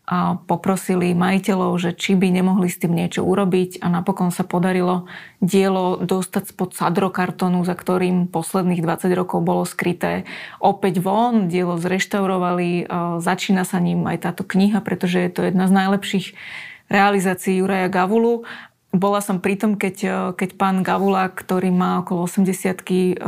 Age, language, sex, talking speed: 20-39, Slovak, female, 145 wpm